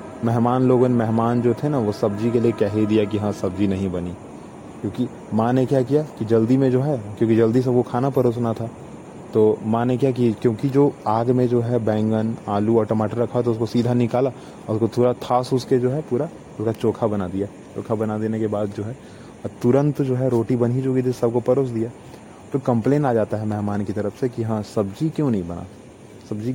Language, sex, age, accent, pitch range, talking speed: Hindi, male, 20-39, native, 100-125 Hz, 230 wpm